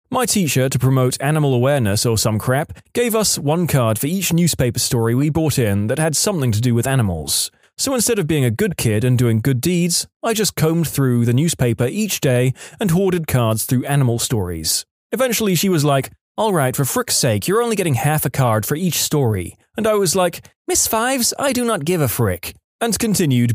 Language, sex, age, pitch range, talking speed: English, male, 20-39, 115-170 Hz, 215 wpm